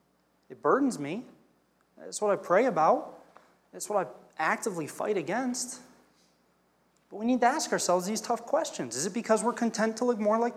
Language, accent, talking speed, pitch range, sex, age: English, American, 180 wpm, 175-240 Hz, male, 30-49